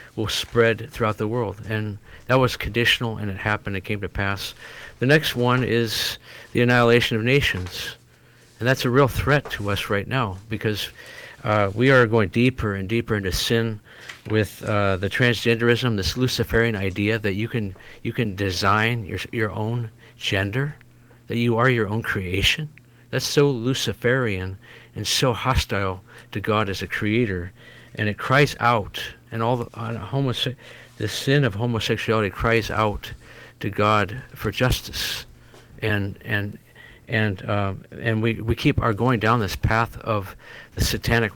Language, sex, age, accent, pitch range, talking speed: English, male, 50-69, American, 105-120 Hz, 165 wpm